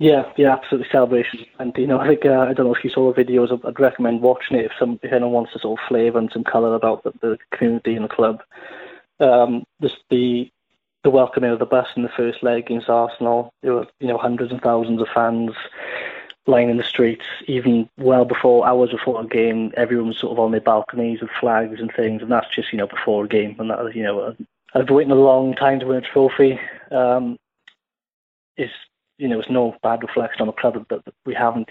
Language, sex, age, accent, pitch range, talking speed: English, male, 20-39, British, 115-130 Hz, 225 wpm